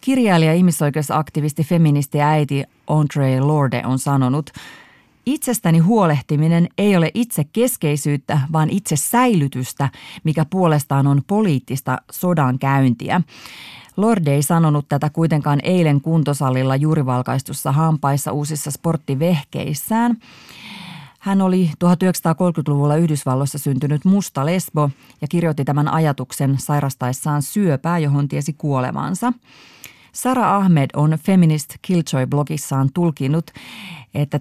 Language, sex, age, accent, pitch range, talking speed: Finnish, female, 30-49, native, 140-175 Hz, 105 wpm